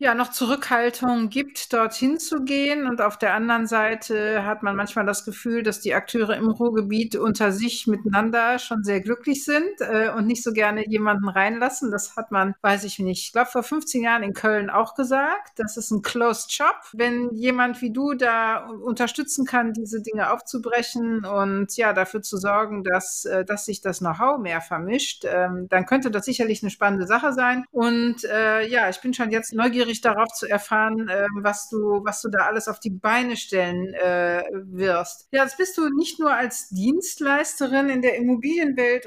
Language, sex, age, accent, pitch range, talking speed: German, female, 50-69, German, 210-255 Hz, 185 wpm